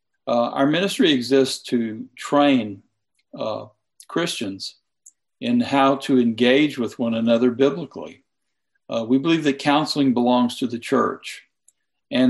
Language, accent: English, American